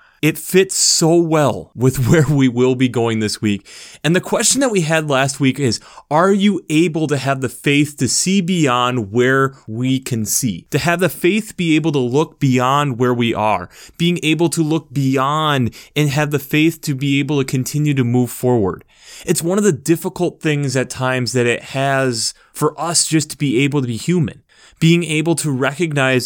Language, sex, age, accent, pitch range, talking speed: English, male, 30-49, American, 125-155 Hz, 200 wpm